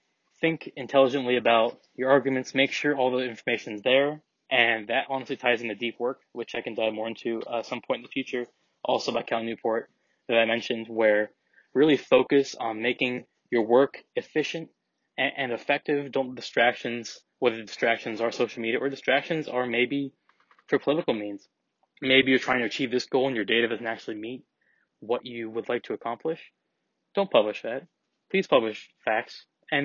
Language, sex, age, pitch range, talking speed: English, male, 20-39, 115-140 Hz, 180 wpm